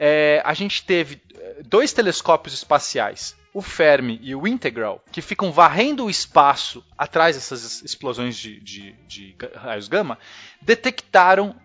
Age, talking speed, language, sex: 20-39, 125 wpm, Portuguese, male